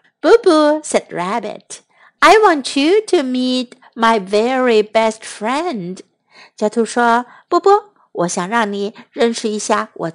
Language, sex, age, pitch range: Chinese, female, 50-69, 205-310 Hz